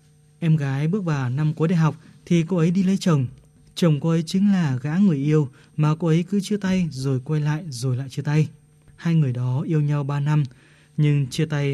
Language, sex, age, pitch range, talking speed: Vietnamese, male, 20-39, 145-175 Hz, 230 wpm